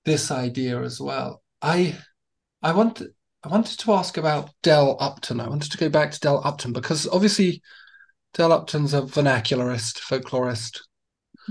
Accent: British